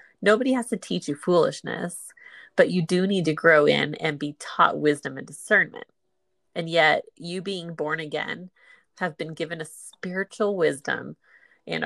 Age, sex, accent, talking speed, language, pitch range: 30-49, female, American, 160 wpm, English, 155-200 Hz